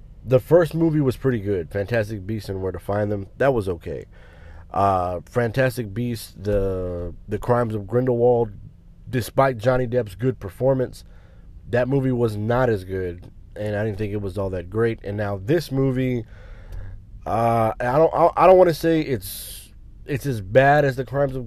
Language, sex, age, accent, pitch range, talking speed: English, male, 30-49, American, 95-120 Hz, 180 wpm